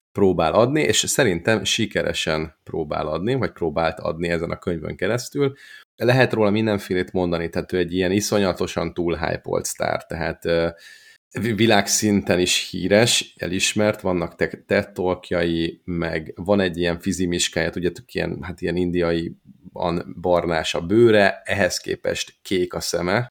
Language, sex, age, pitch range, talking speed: Hungarian, male, 30-49, 85-100 Hz, 130 wpm